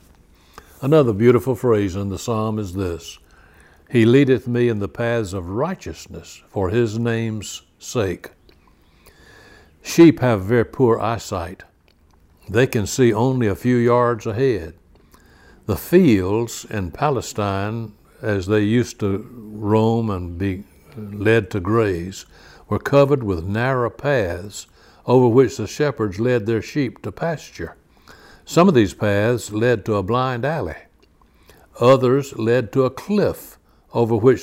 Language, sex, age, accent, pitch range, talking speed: English, male, 60-79, American, 90-120 Hz, 135 wpm